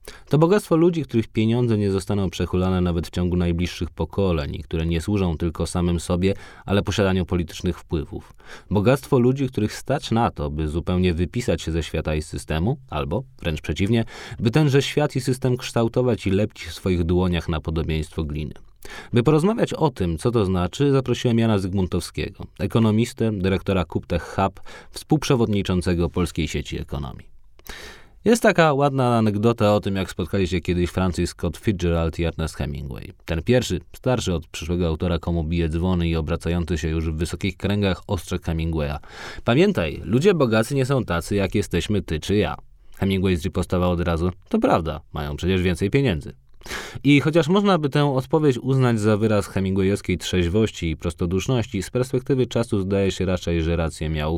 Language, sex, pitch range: Polish, male, 85-110 Hz